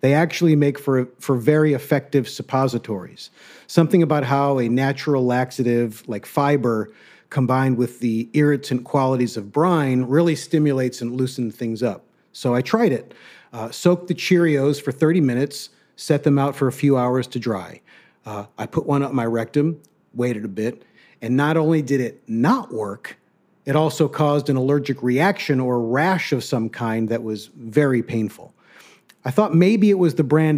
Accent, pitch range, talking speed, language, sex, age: American, 125-150 Hz, 175 wpm, English, male, 40-59